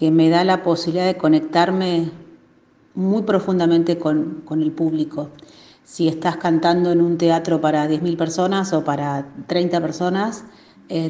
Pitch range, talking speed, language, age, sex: 155-175 Hz, 145 wpm, Spanish, 40-59, female